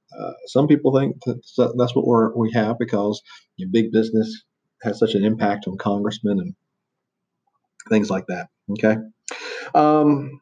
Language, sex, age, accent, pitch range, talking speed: English, male, 40-59, American, 105-130 Hz, 140 wpm